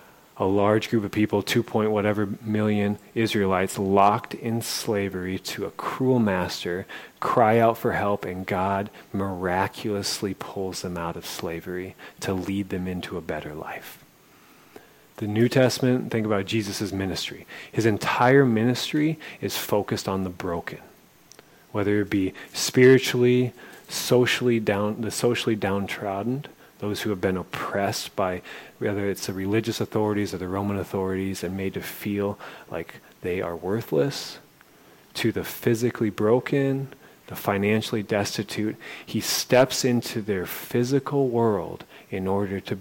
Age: 30-49